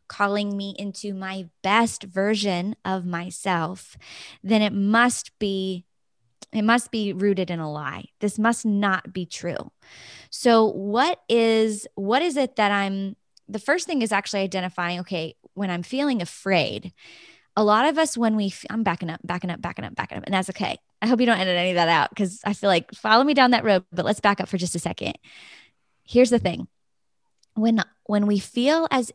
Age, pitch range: 20-39, 185-220 Hz